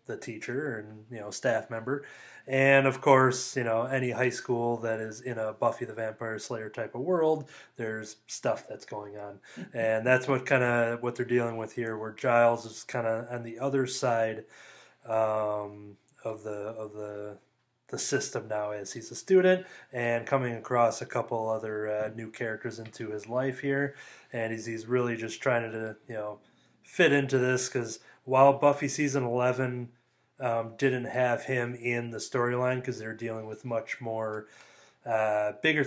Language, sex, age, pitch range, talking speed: English, male, 20-39, 110-125 Hz, 180 wpm